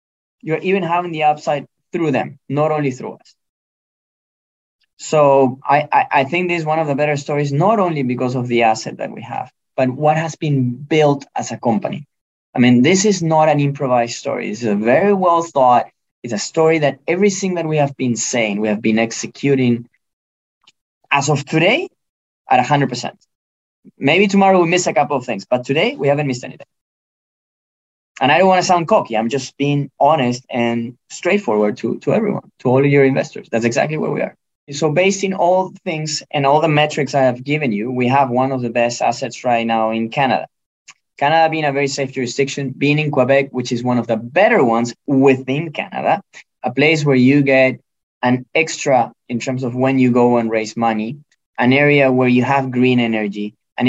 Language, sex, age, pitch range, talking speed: English, male, 20-39, 125-155 Hz, 200 wpm